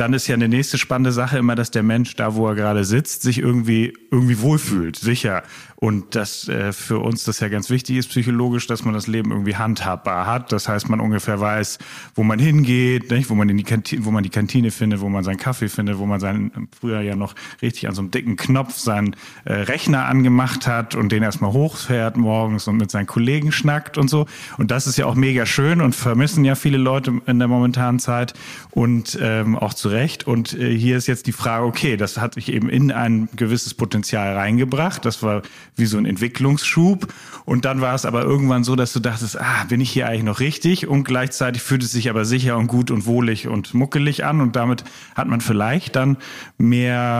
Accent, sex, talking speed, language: German, male, 220 wpm, German